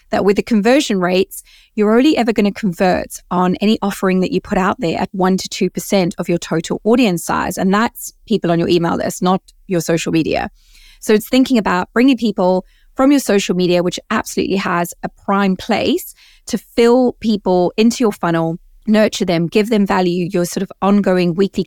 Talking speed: 200 wpm